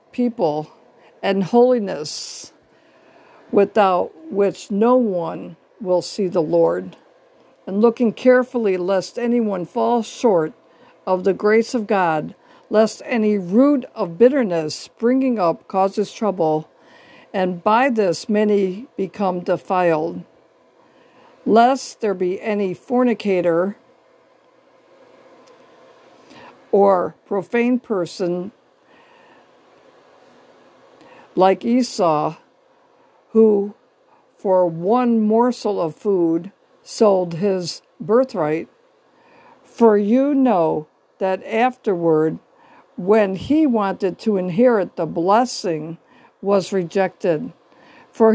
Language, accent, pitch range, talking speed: English, American, 185-245 Hz, 90 wpm